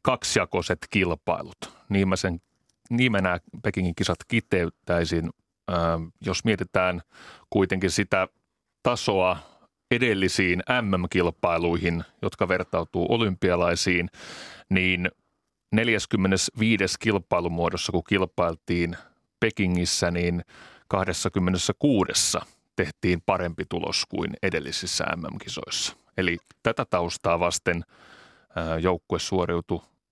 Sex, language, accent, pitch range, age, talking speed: male, Finnish, native, 85-100 Hz, 30-49, 80 wpm